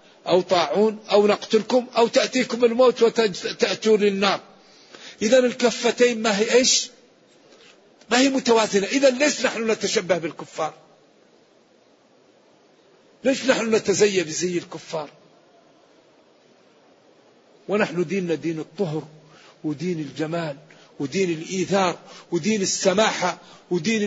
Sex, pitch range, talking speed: male, 175-230 Hz, 95 wpm